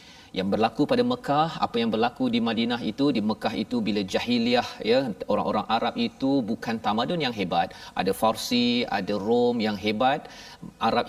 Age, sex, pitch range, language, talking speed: 40-59, male, 150-250 Hz, Malayalam, 160 wpm